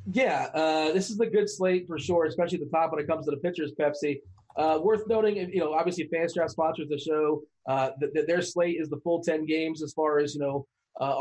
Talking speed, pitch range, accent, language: 250 wpm, 140-160 Hz, American, English